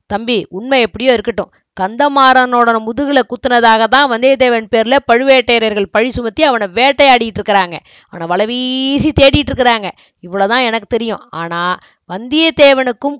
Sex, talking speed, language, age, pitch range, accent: female, 115 wpm, Tamil, 20-39, 195-255 Hz, native